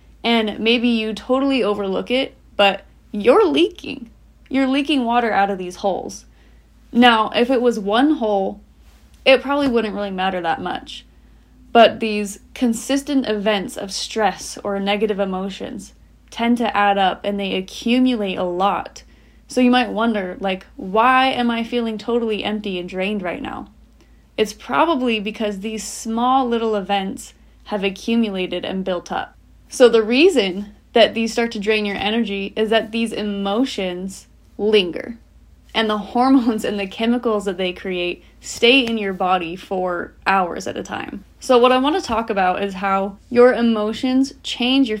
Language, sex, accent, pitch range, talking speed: English, female, American, 200-245 Hz, 160 wpm